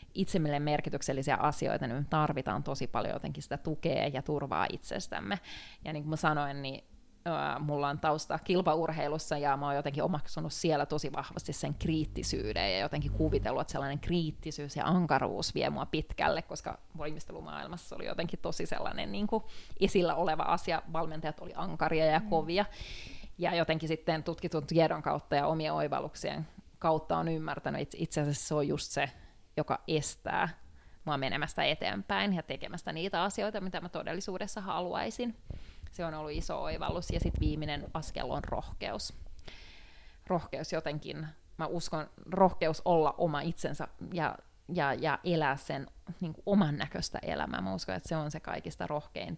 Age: 20-39